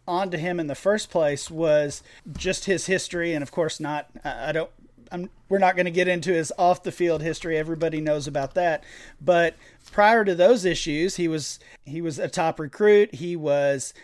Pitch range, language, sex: 150-180 Hz, English, male